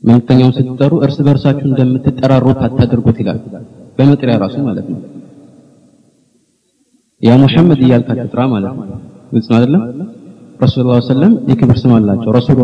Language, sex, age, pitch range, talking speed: Amharic, male, 30-49, 120-150 Hz, 140 wpm